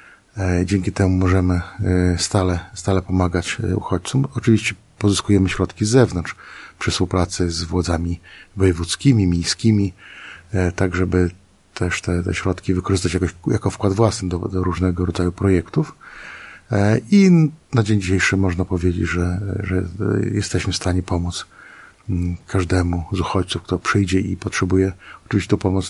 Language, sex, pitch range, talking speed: Polish, male, 90-100 Hz, 130 wpm